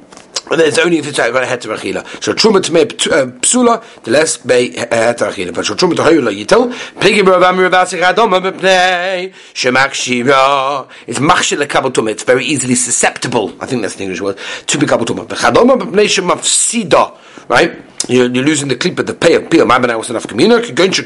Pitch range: 150-210 Hz